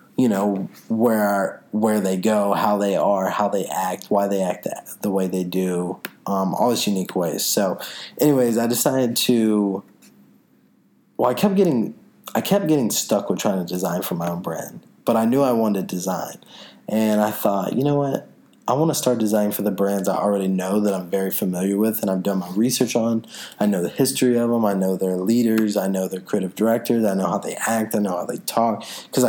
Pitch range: 100-115 Hz